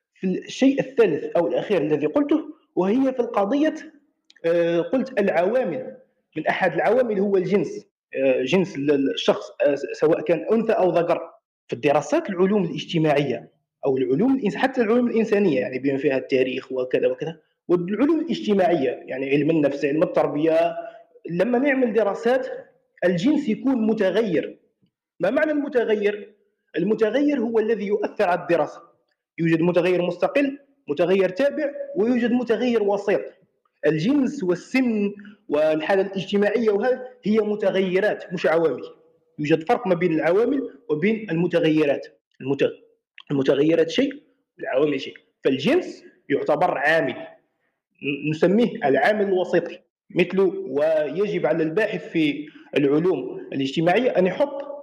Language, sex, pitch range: Arabic, male, 175-265 Hz